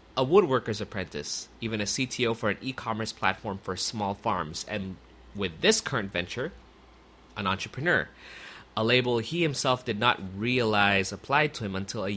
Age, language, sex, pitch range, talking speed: 30-49, English, male, 95-120 Hz, 160 wpm